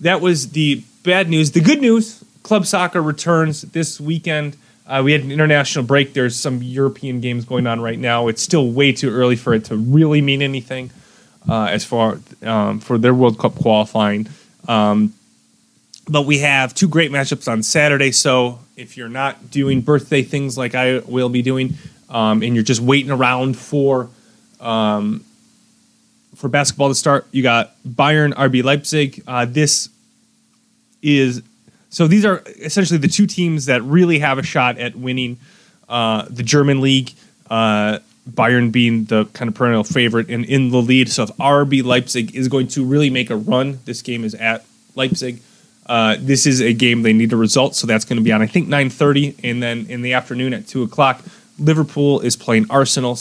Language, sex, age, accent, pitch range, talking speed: English, male, 20-39, American, 120-150 Hz, 185 wpm